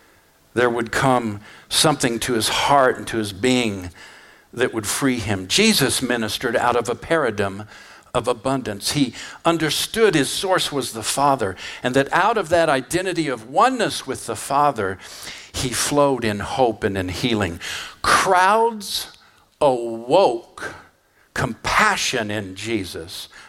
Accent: American